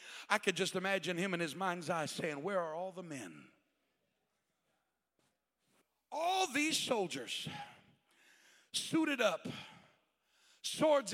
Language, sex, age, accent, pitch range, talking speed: English, male, 60-79, American, 180-240 Hz, 115 wpm